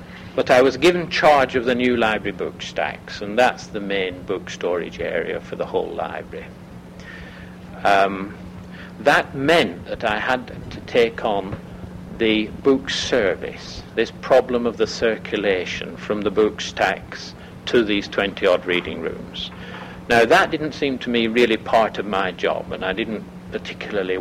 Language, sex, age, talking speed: English, male, 60-79, 155 wpm